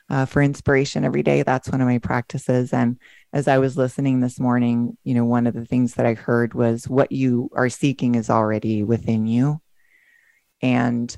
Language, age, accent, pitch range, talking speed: English, 30-49, American, 120-140 Hz, 195 wpm